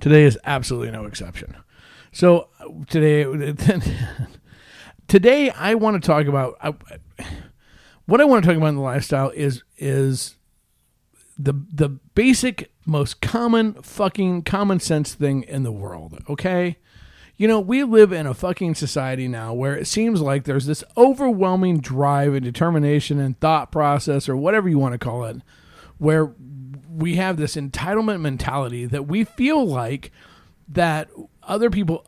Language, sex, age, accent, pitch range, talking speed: English, male, 50-69, American, 140-175 Hz, 150 wpm